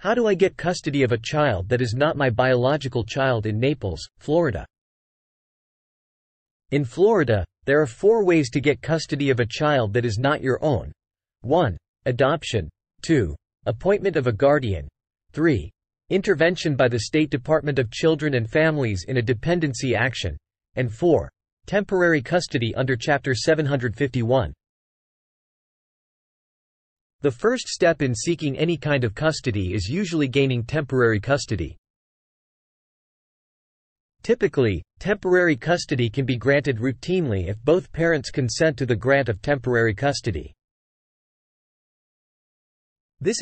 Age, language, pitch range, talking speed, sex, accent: 40-59, English, 115-155 Hz, 130 wpm, male, American